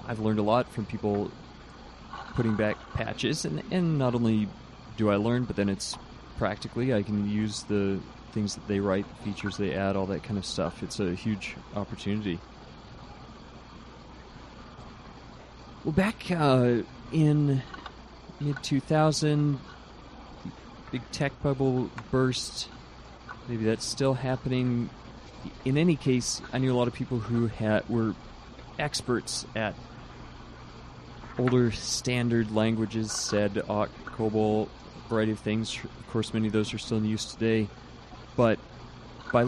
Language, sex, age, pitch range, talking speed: English, male, 30-49, 110-125 Hz, 135 wpm